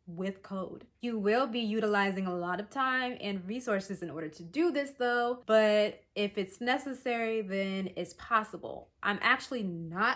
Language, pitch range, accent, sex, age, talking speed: English, 190-245 Hz, American, female, 20-39, 165 wpm